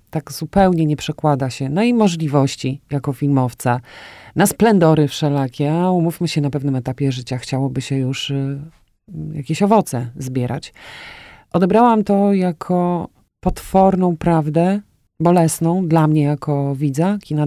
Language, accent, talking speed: Polish, native, 125 wpm